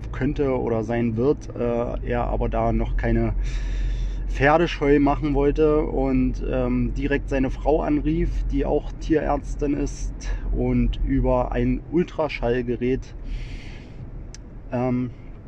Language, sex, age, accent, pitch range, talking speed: German, male, 30-49, German, 120-145 Hz, 110 wpm